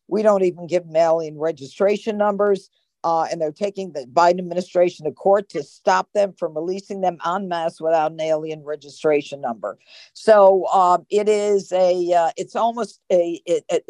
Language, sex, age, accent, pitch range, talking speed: English, female, 50-69, American, 160-195 Hz, 175 wpm